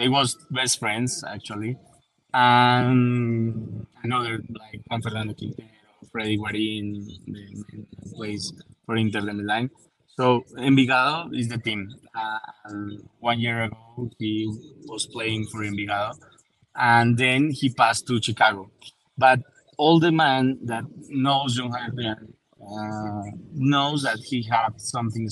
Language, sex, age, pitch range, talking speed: English, male, 20-39, 110-125 Hz, 125 wpm